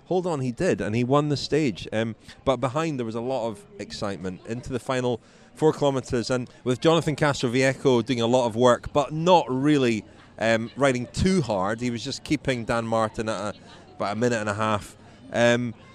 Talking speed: 205 wpm